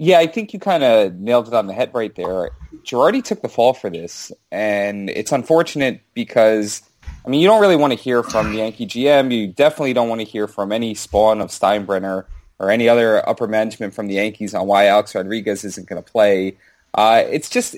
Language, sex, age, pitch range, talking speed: English, male, 20-39, 105-135 Hz, 220 wpm